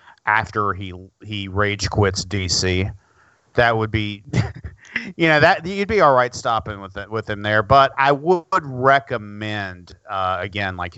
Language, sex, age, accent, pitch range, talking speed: English, male, 40-59, American, 95-115 Hz, 160 wpm